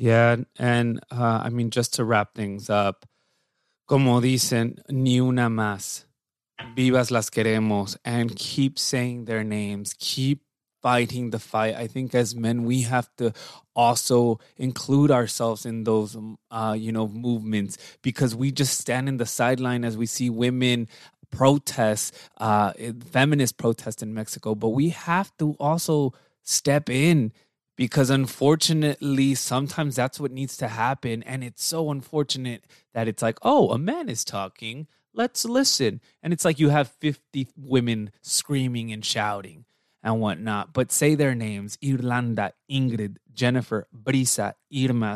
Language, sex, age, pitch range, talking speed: English, male, 20-39, 110-135 Hz, 145 wpm